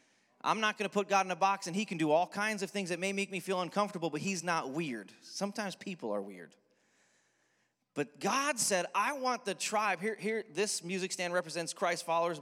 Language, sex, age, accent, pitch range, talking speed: English, male, 30-49, American, 165-210 Hz, 220 wpm